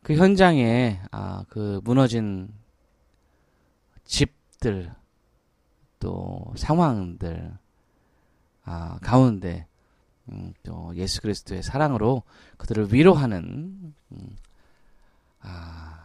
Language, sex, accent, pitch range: Korean, male, native, 85-125 Hz